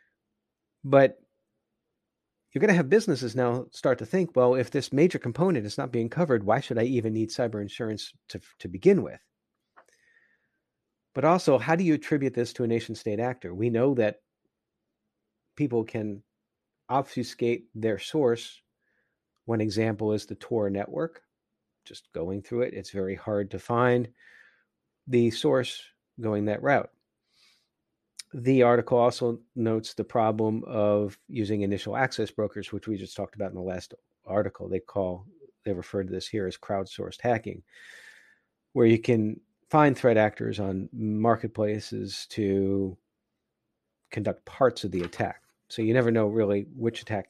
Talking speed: 155 wpm